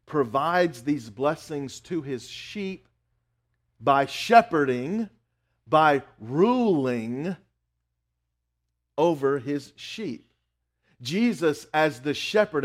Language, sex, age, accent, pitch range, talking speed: English, male, 50-69, American, 115-155 Hz, 80 wpm